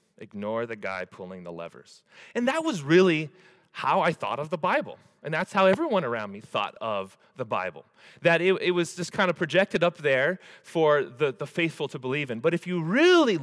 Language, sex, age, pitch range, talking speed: English, male, 30-49, 115-185 Hz, 210 wpm